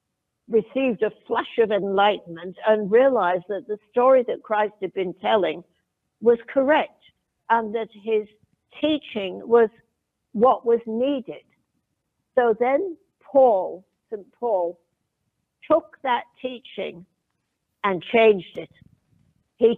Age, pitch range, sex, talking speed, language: 60-79, 190-240 Hz, female, 110 wpm, English